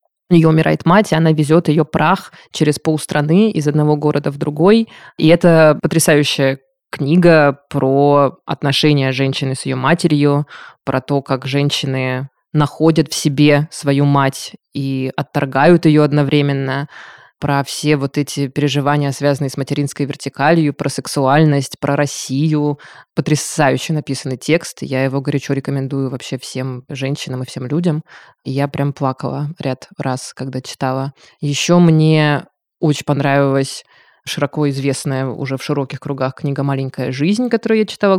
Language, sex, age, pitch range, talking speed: Russian, female, 20-39, 140-160 Hz, 140 wpm